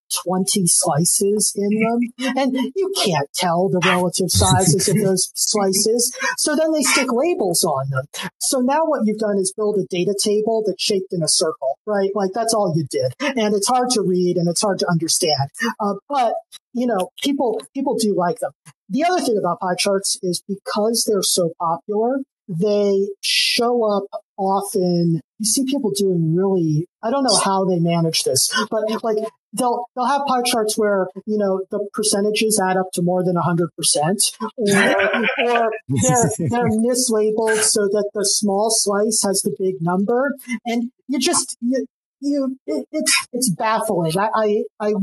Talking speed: 180 wpm